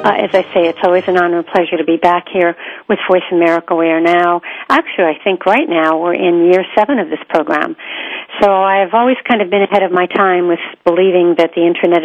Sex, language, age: female, English, 50-69